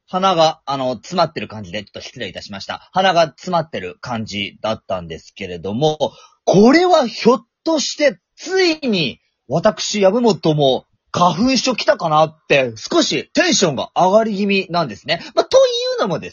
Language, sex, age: Japanese, male, 30-49